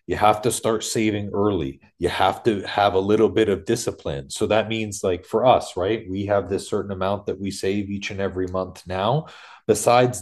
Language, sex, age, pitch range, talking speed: English, male, 30-49, 100-125 Hz, 210 wpm